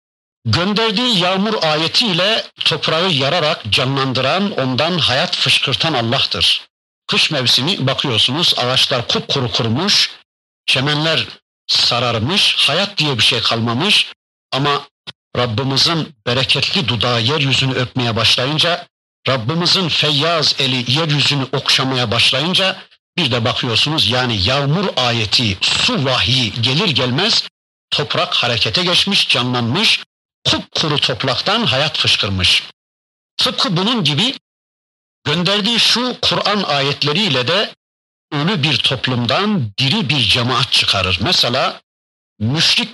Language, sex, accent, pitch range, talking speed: Turkish, male, native, 120-170 Hz, 100 wpm